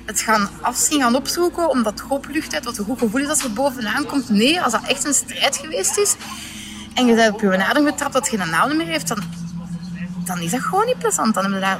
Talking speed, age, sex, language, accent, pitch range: 255 wpm, 20-39, female, Dutch, Dutch, 205-285 Hz